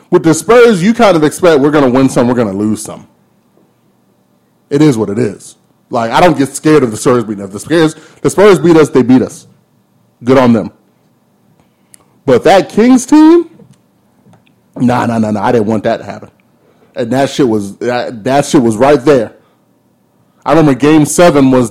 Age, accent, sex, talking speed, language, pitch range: 30-49, American, male, 190 wpm, English, 110-150 Hz